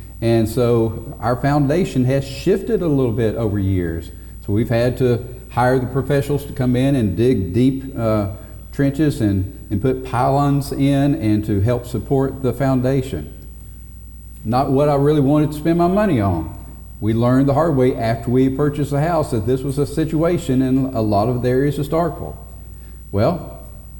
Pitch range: 105-145 Hz